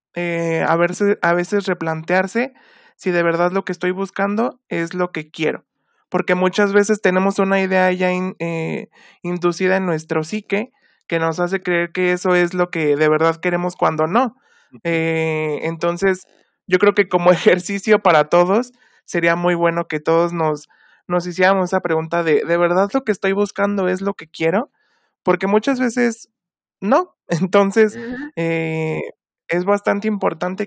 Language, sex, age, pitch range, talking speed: Spanish, male, 20-39, 165-200 Hz, 160 wpm